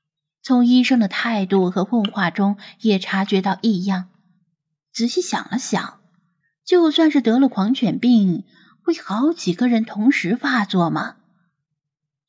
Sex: female